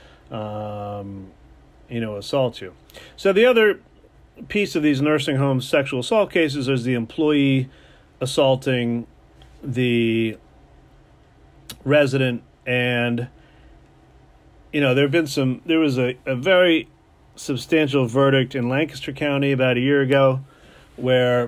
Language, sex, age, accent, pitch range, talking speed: English, male, 40-59, American, 120-145 Hz, 120 wpm